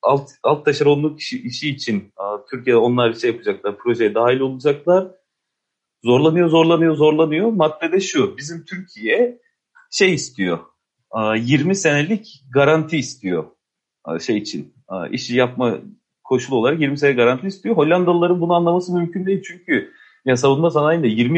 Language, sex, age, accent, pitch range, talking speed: Turkish, male, 40-59, native, 130-180 Hz, 145 wpm